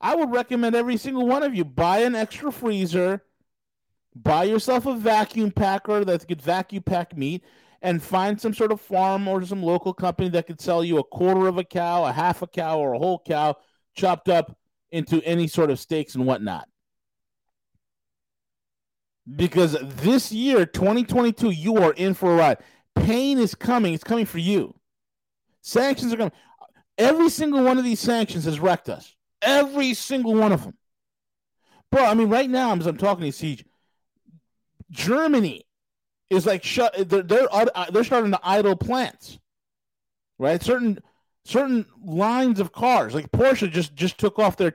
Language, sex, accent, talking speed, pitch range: English, male, American, 170 wpm, 170-230 Hz